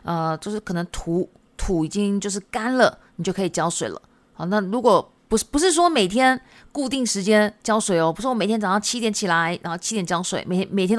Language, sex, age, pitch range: Japanese, female, 20-39, 185-250 Hz